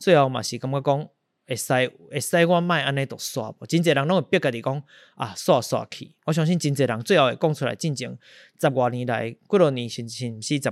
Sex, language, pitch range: male, Chinese, 120-155 Hz